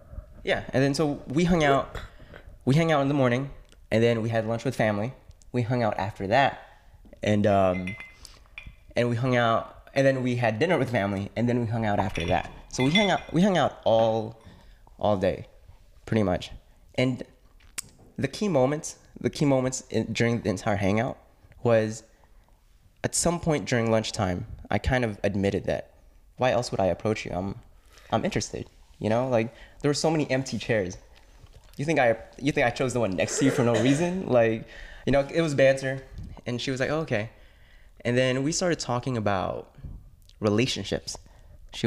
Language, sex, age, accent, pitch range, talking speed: English, male, 20-39, American, 100-125 Hz, 190 wpm